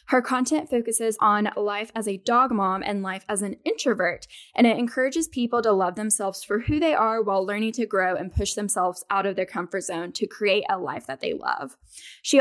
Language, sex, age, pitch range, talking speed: English, female, 10-29, 205-255 Hz, 220 wpm